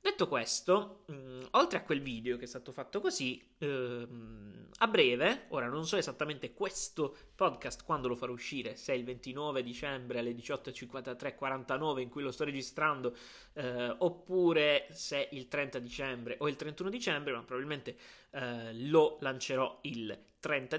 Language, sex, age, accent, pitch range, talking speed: Italian, male, 20-39, native, 120-155 Hz, 140 wpm